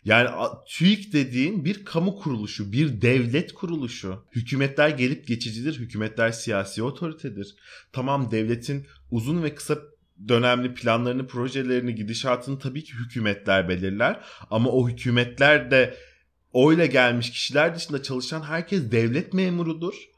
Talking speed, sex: 120 wpm, male